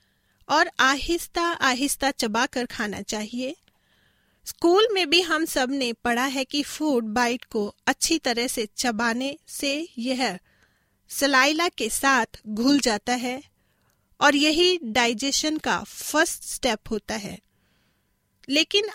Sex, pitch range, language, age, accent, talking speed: female, 230-300 Hz, Hindi, 40-59, native, 125 wpm